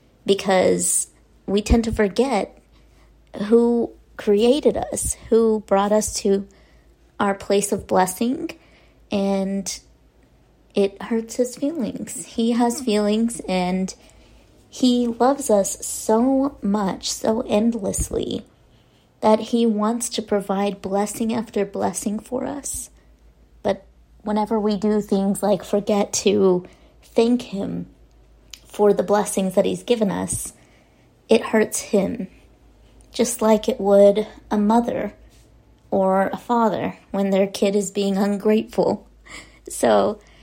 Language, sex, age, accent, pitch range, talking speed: English, female, 30-49, American, 195-230 Hz, 115 wpm